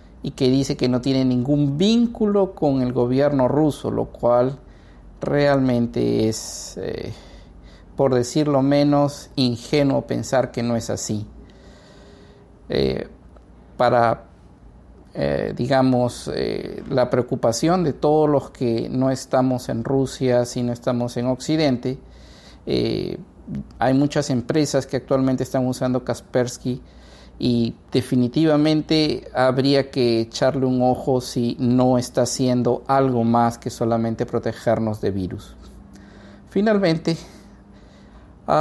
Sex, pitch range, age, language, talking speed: male, 120-140 Hz, 50-69, Spanish, 115 wpm